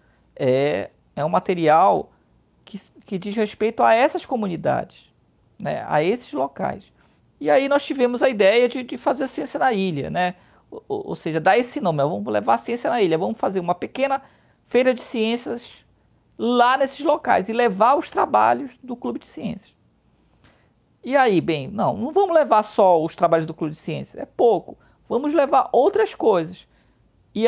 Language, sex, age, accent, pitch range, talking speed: Portuguese, male, 40-59, Brazilian, 170-255 Hz, 175 wpm